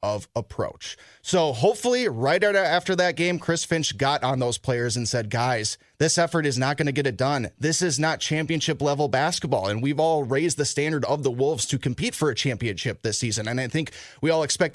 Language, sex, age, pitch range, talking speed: English, male, 20-39, 130-180 Hz, 220 wpm